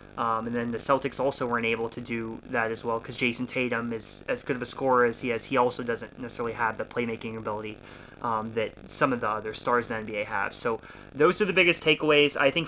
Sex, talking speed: male, 245 wpm